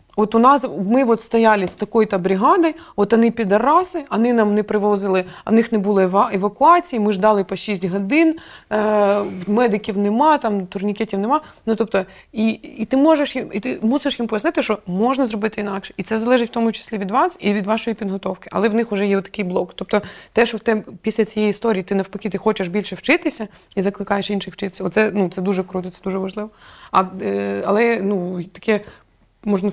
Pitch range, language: 185-220 Hz, Ukrainian